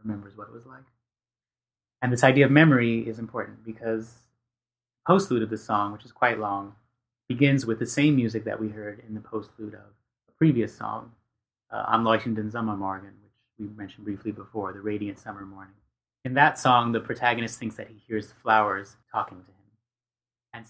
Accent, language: American, English